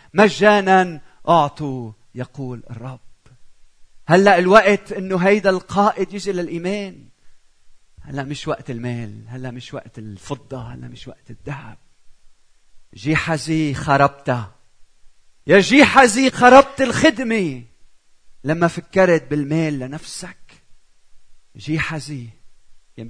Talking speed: 105 wpm